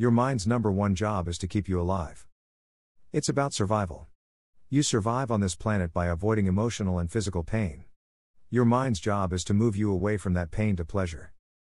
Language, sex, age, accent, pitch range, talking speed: English, male, 50-69, American, 85-115 Hz, 190 wpm